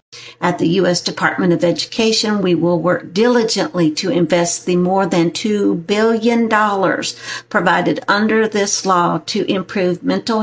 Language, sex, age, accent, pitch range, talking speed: English, female, 50-69, American, 175-220 Hz, 145 wpm